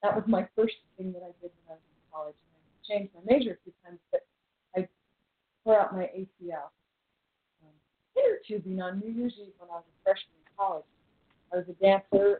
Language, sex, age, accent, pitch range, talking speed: English, female, 40-59, American, 170-215 Hz, 230 wpm